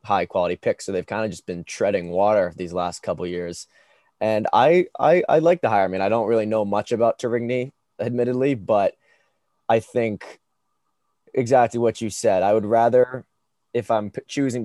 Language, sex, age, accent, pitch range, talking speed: English, male, 20-39, American, 95-115 Hz, 185 wpm